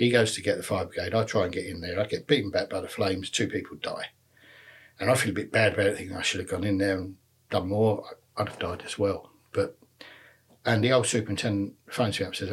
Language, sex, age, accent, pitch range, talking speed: English, male, 60-79, British, 100-130 Hz, 265 wpm